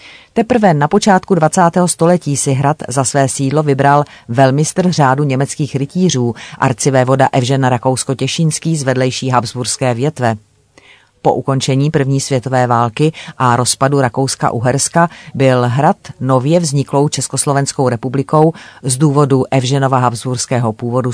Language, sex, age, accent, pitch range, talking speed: Czech, female, 40-59, native, 125-145 Hz, 120 wpm